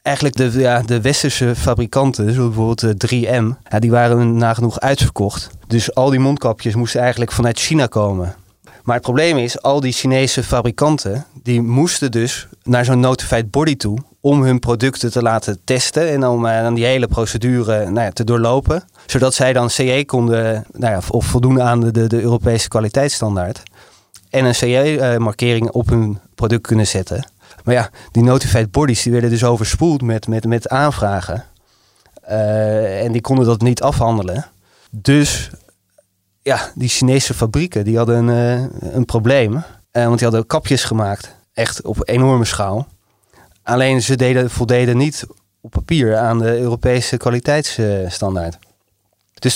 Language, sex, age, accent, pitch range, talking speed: Dutch, male, 30-49, Dutch, 110-130 Hz, 150 wpm